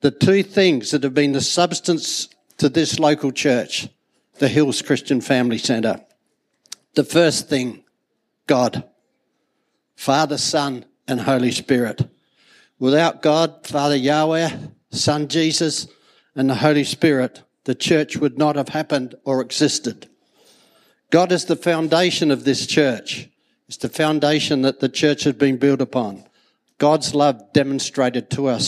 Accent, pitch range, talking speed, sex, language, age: Australian, 130-160 Hz, 140 wpm, male, English, 60-79